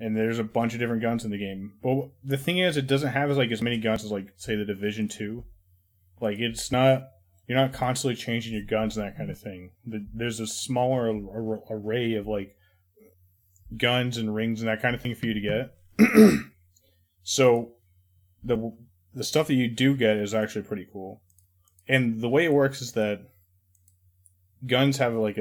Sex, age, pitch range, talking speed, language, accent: male, 20-39, 95-115 Hz, 195 wpm, English, American